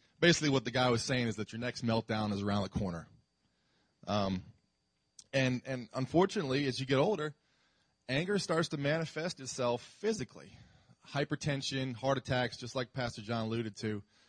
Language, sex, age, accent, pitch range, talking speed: English, male, 30-49, American, 105-130 Hz, 160 wpm